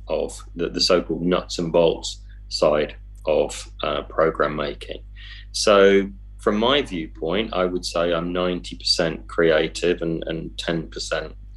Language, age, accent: English, 30-49, British